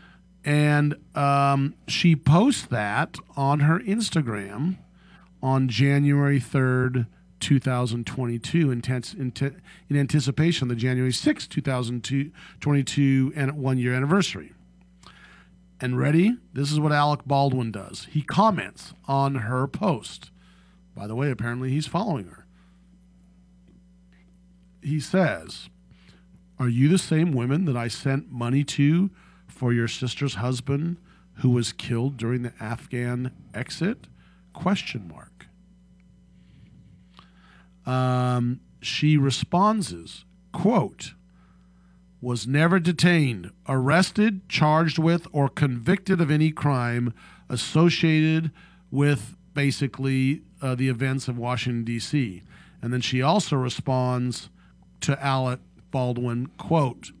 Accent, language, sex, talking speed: American, English, male, 105 wpm